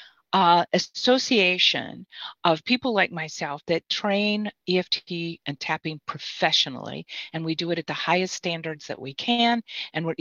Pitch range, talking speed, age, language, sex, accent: 155-215 Hz, 145 wpm, 40-59, English, female, American